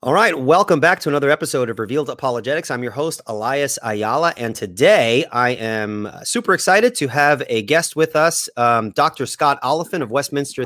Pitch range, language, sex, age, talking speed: 120-155 Hz, English, male, 30-49, 185 wpm